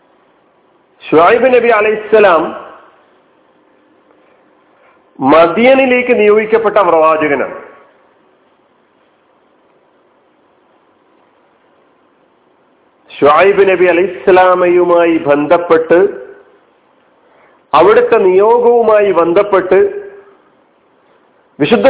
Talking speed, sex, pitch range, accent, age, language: 45 wpm, male, 170-260 Hz, native, 50-69, Malayalam